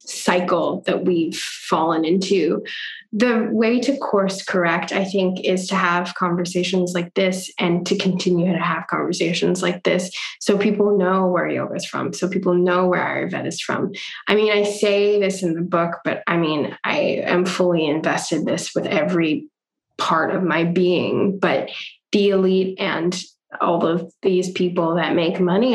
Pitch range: 175-200 Hz